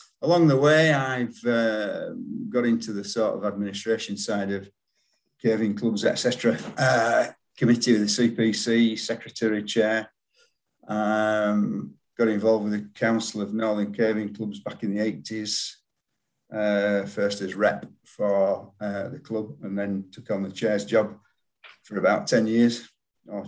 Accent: British